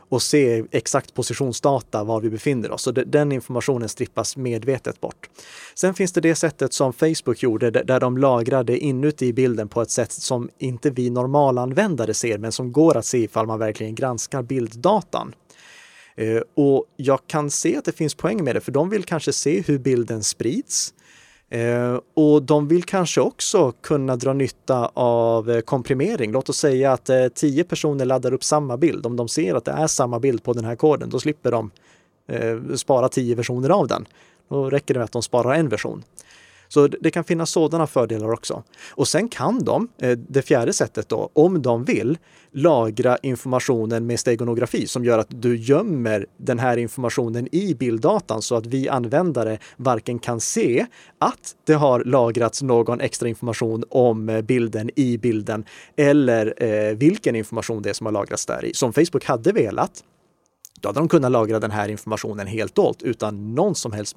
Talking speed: 180 wpm